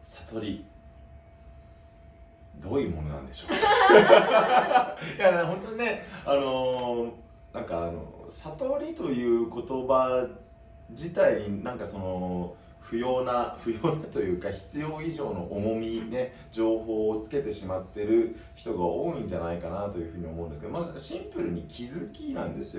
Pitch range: 85-120 Hz